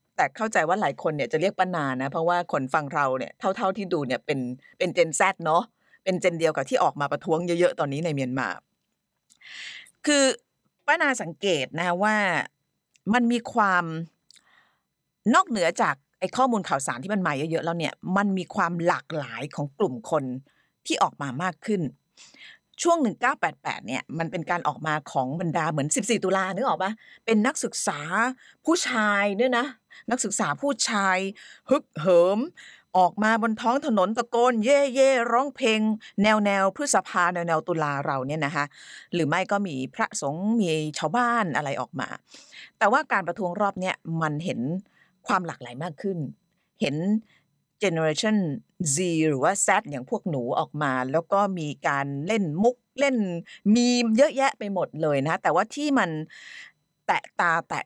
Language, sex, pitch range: Thai, female, 160-220 Hz